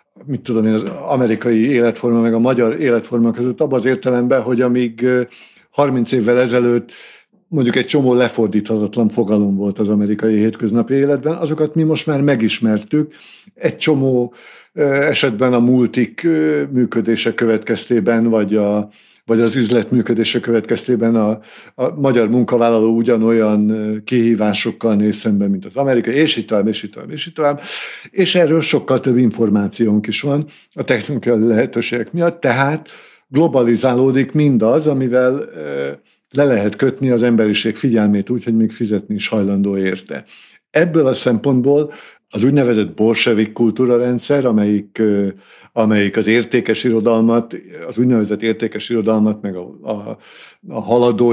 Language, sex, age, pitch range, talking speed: Hungarian, male, 60-79, 110-135 Hz, 135 wpm